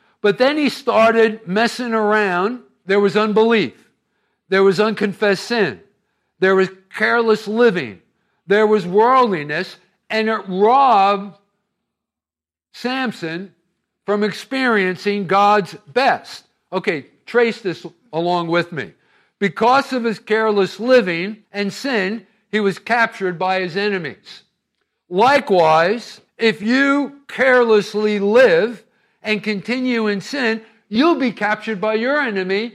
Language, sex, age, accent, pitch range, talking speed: English, male, 50-69, American, 195-240 Hz, 115 wpm